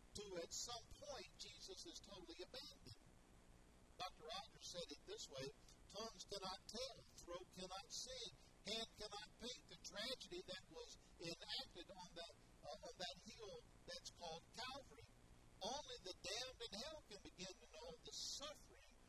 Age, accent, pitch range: 50-69, American, 165-255 Hz